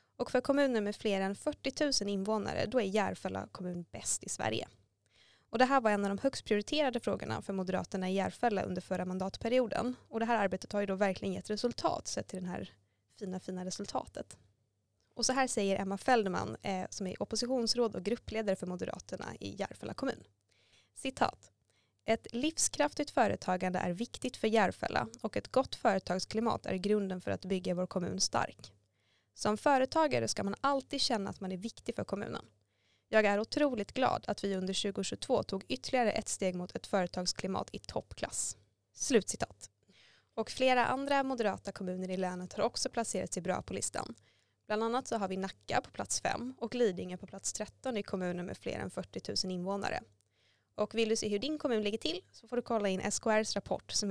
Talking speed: 185 wpm